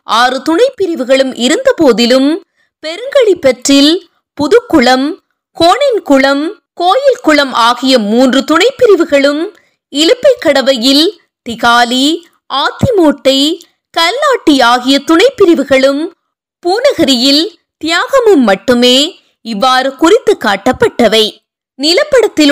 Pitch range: 250-340 Hz